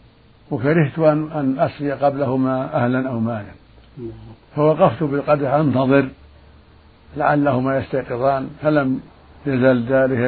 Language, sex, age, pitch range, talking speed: Arabic, male, 60-79, 105-150 Hz, 80 wpm